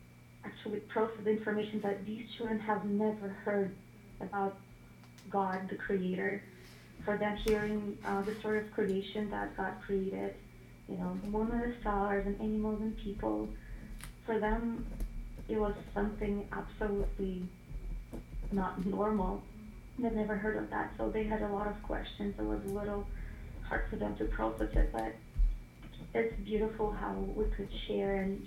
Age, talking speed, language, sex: 20-39, 150 wpm, English, female